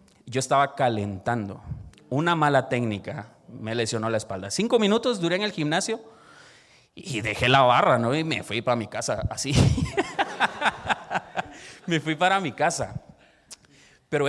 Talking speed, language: 145 wpm, Spanish